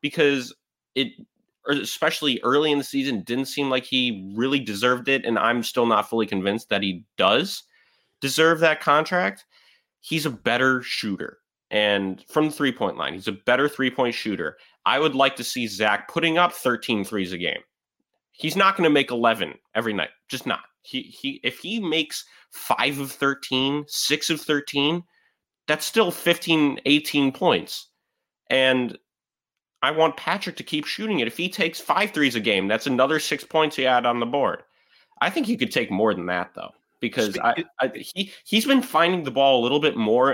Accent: American